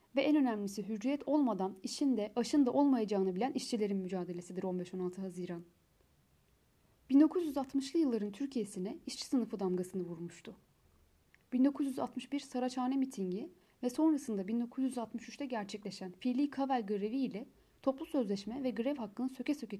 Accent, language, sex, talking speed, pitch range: native, Turkish, female, 120 wpm, 200-265 Hz